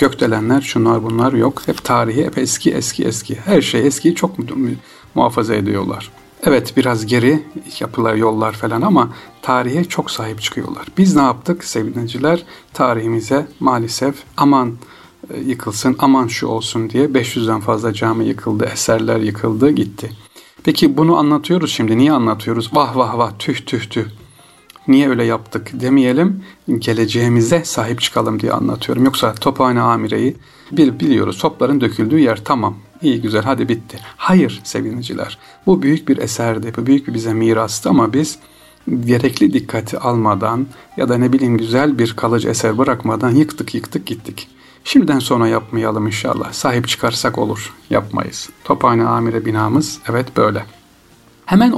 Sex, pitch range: male, 115-140 Hz